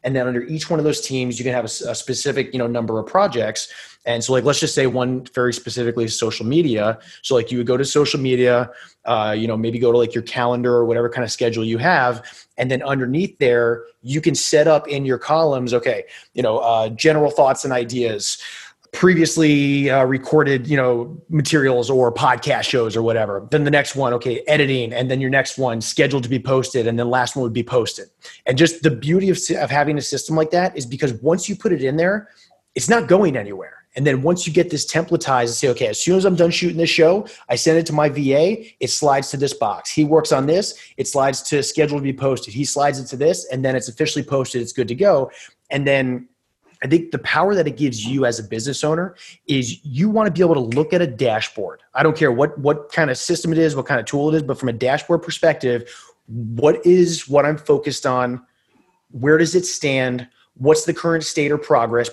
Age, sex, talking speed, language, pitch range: 30-49, male, 240 wpm, English, 125-160 Hz